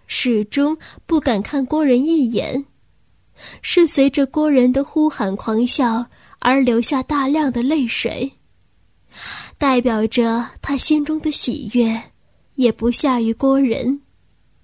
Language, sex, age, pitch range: Chinese, female, 10-29, 235-285 Hz